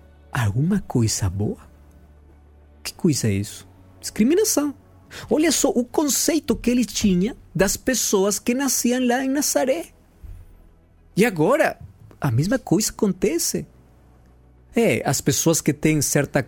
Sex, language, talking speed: male, Portuguese, 125 wpm